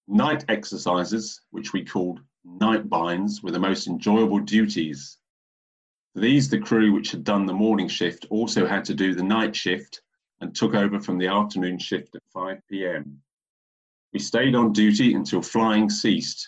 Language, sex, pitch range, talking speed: English, male, 90-110 Hz, 165 wpm